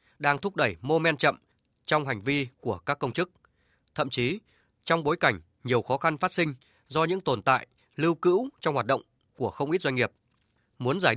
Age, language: 20-39, Vietnamese